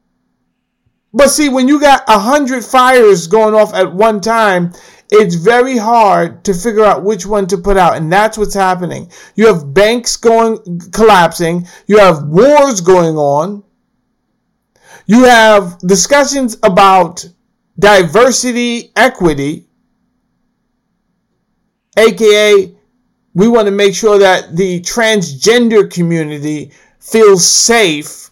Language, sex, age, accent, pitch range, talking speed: English, male, 50-69, American, 155-220 Hz, 120 wpm